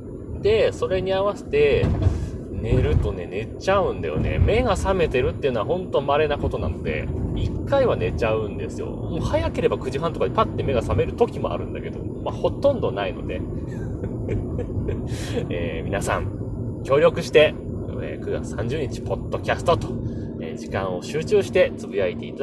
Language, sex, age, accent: Japanese, male, 30-49, native